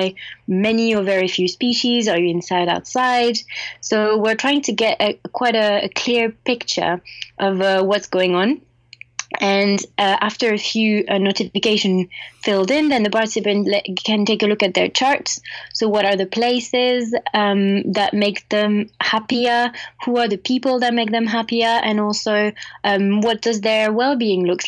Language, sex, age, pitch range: English, female, 20-39, 195-230 Hz